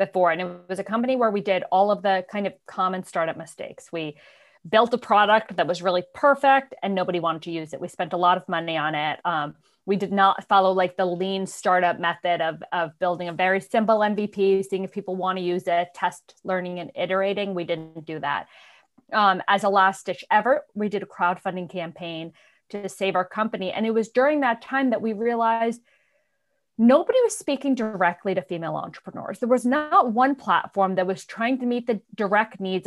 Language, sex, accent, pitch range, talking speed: English, female, American, 185-245 Hz, 210 wpm